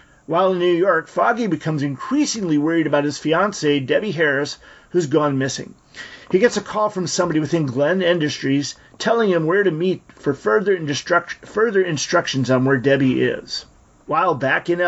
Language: English